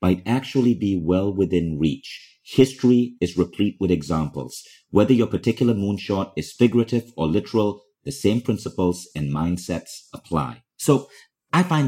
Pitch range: 90-120 Hz